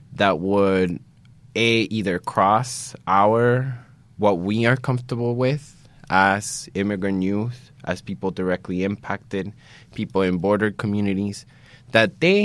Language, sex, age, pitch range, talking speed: English, male, 20-39, 95-115 Hz, 115 wpm